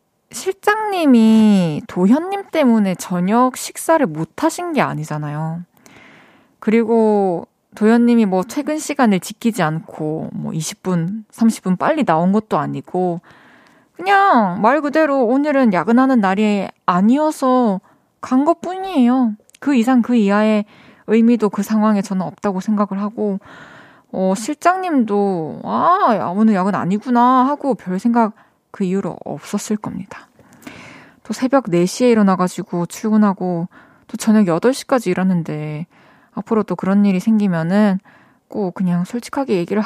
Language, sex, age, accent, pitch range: Korean, female, 20-39, native, 190-255 Hz